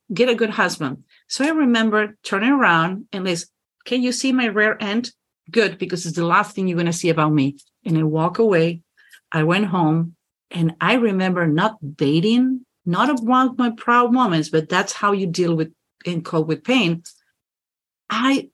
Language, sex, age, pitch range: English, female, 40-59, 155-210 Hz